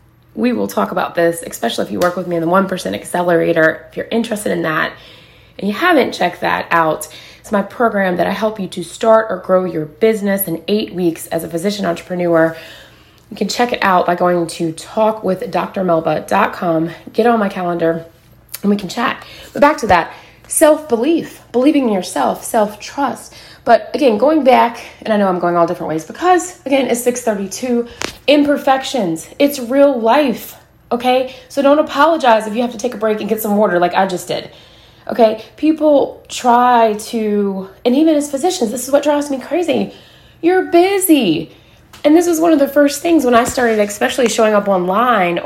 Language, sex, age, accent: English, female, 20-39, American